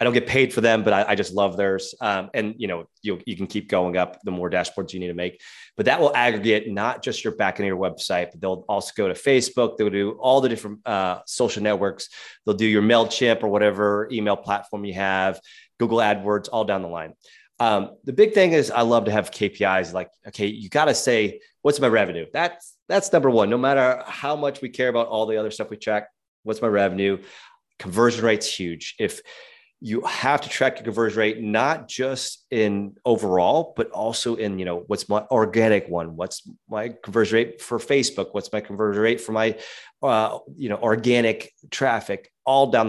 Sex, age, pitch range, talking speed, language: male, 30-49, 100-125 Hz, 215 wpm, English